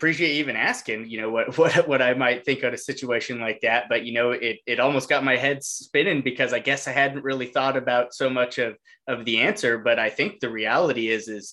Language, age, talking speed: English, 20-39, 245 wpm